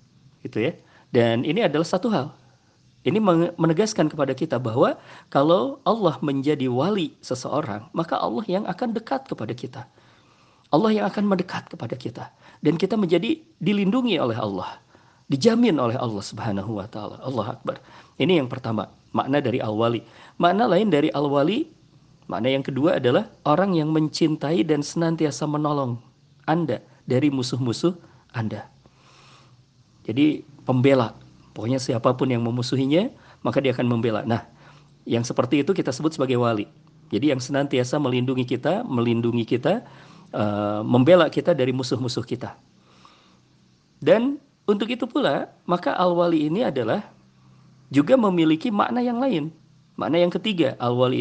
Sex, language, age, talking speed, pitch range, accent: male, Indonesian, 50-69, 135 wpm, 120-170 Hz, native